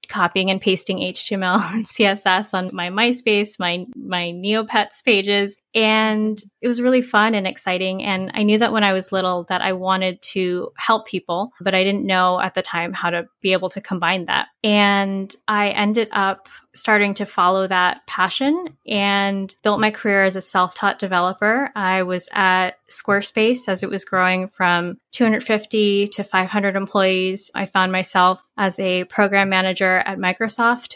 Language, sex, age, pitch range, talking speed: English, female, 10-29, 185-215 Hz, 170 wpm